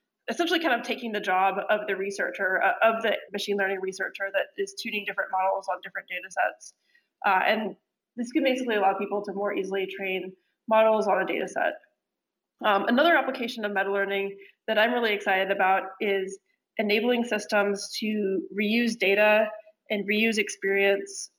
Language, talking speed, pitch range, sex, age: English, 160 wpm, 200-260 Hz, female, 20-39